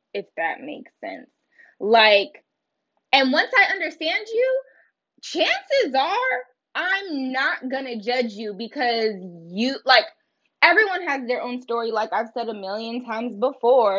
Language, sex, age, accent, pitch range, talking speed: English, female, 20-39, American, 240-320 Hz, 140 wpm